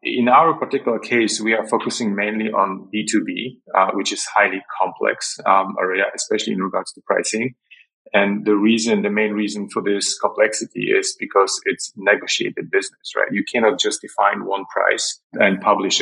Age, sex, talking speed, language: 30-49, male, 170 wpm, English